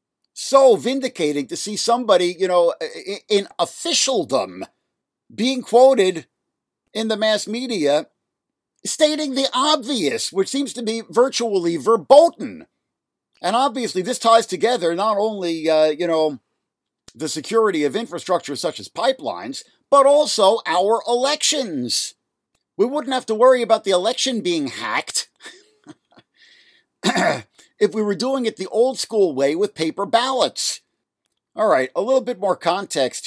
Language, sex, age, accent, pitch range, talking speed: English, male, 50-69, American, 165-260 Hz, 130 wpm